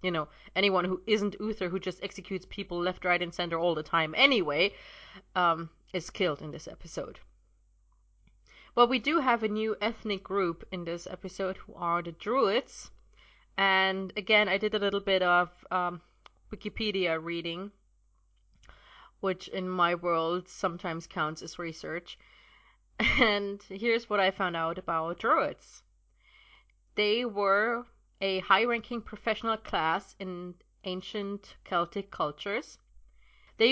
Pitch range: 175-215 Hz